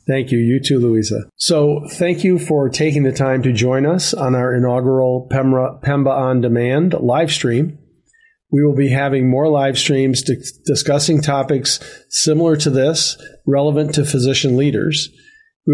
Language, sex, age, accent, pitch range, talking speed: English, male, 40-59, American, 130-150 Hz, 155 wpm